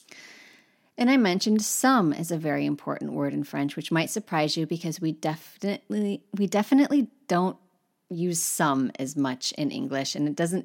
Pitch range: 150-205 Hz